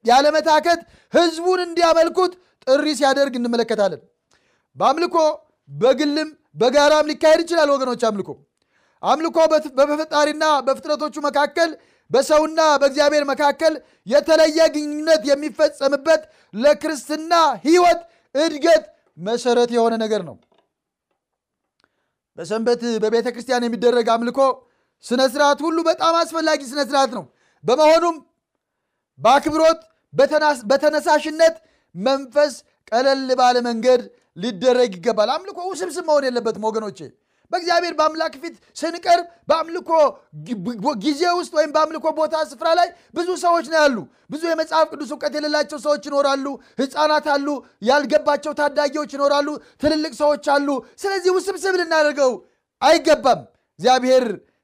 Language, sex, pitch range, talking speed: Amharic, male, 255-320 Hz, 100 wpm